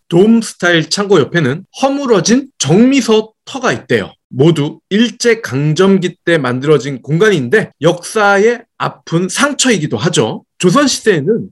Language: Korean